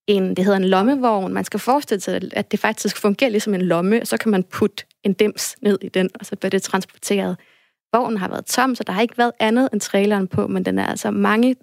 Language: Danish